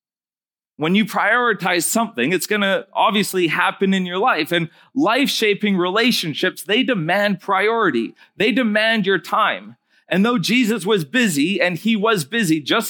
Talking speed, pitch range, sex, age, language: 150 wpm, 180-225 Hz, male, 40-59, English